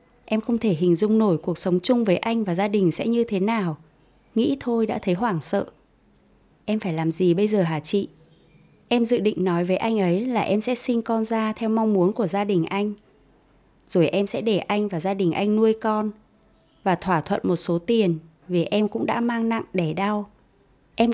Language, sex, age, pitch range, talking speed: Vietnamese, female, 20-39, 175-225 Hz, 220 wpm